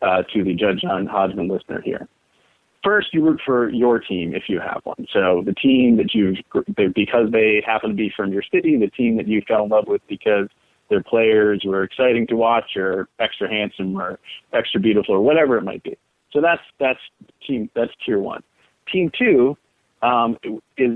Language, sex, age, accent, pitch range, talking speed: English, male, 30-49, American, 105-135 Hz, 195 wpm